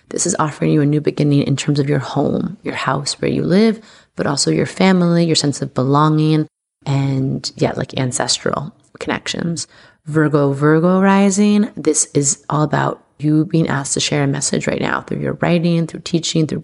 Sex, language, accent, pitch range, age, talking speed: female, English, American, 145-170 Hz, 30-49, 190 wpm